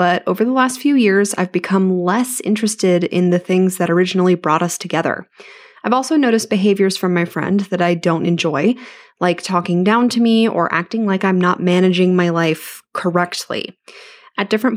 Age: 20-39